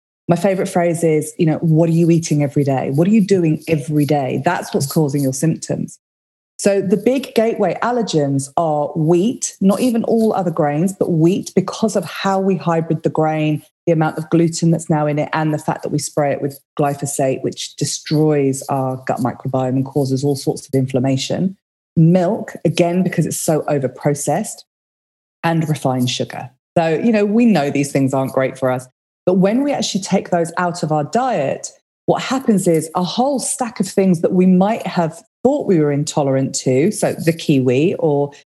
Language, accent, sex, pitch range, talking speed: English, British, female, 150-195 Hz, 190 wpm